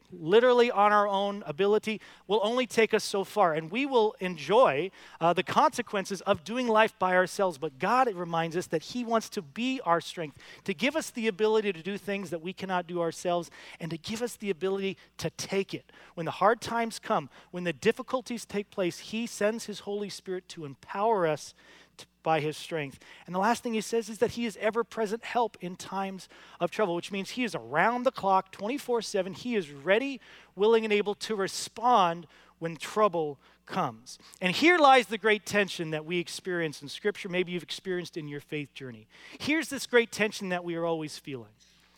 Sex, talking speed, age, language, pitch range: male, 200 wpm, 40-59, English, 175-230 Hz